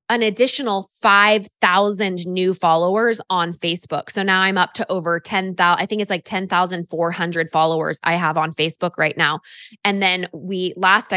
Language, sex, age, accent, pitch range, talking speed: English, female, 20-39, American, 170-210 Hz, 160 wpm